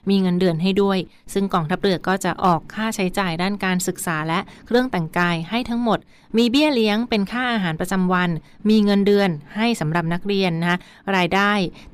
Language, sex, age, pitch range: Thai, female, 20-39, 170-200 Hz